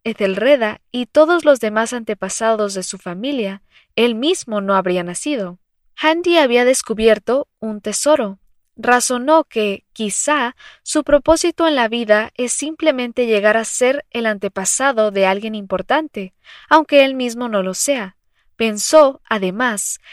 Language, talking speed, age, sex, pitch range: English, 135 wpm, 20-39, female, 215-280 Hz